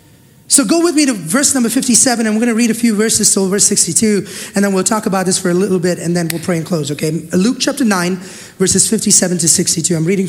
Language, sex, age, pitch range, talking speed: English, male, 30-49, 180-235 Hz, 260 wpm